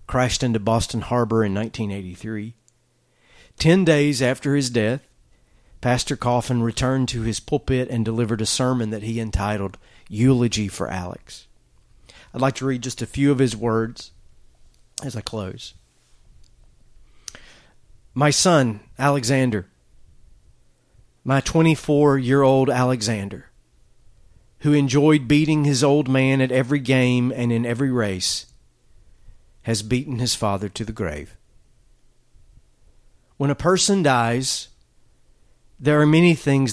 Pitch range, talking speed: 110-135 Hz, 120 wpm